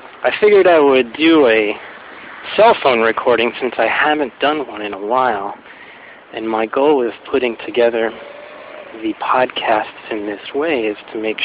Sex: male